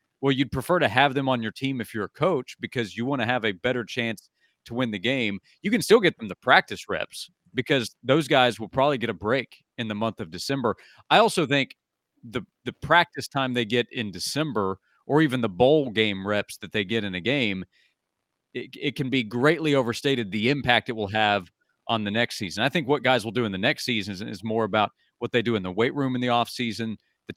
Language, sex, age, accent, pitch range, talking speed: English, male, 40-59, American, 110-135 Hz, 240 wpm